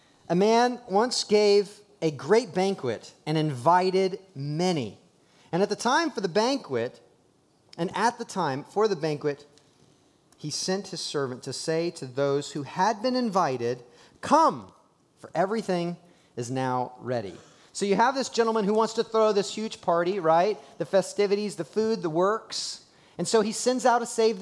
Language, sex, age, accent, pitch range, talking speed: English, male, 30-49, American, 165-255 Hz, 165 wpm